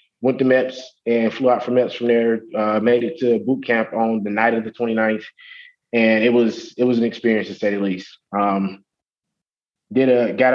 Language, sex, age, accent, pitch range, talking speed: English, male, 20-39, American, 105-120 Hz, 210 wpm